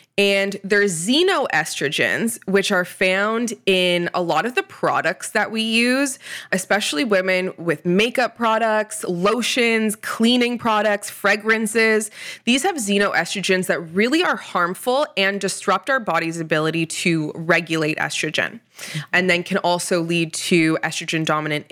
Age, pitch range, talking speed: 20-39, 165-225 Hz, 125 wpm